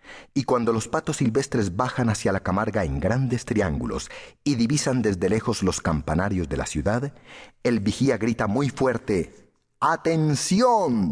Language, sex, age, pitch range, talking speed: English, male, 40-59, 95-135 Hz, 145 wpm